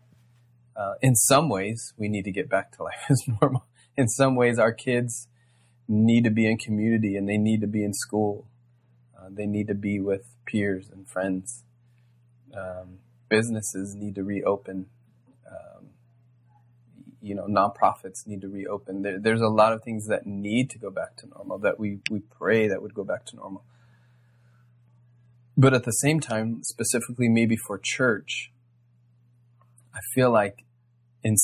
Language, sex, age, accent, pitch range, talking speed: English, male, 20-39, American, 105-120 Hz, 165 wpm